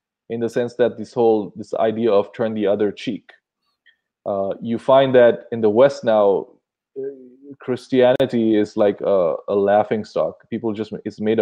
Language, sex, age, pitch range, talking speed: English, male, 20-39, 110-140 Hz, 170 wpm